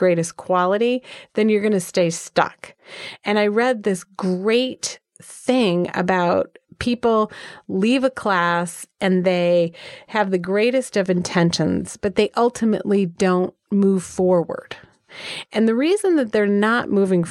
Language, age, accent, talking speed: English, 30-49, American, 135 wpm